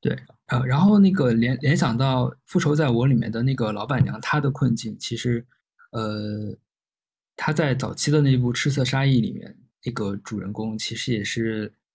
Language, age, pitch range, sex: Chinese, 20-39, 110-135 Hz, male